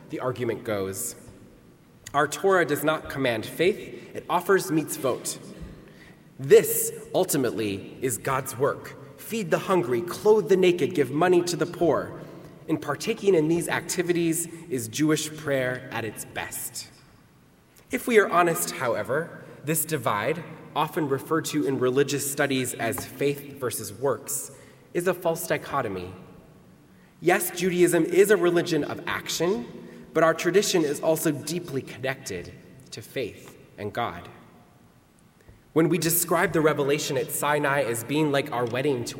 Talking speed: 140 wpm